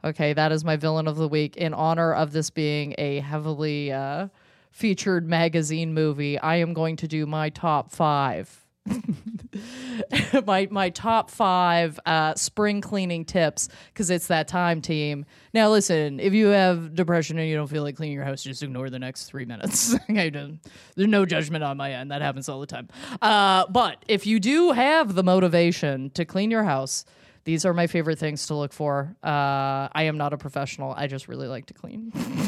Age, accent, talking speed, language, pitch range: 30-49, American, 190 wpm, English, 150-195 Hz